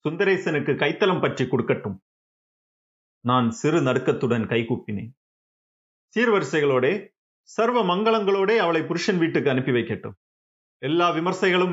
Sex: male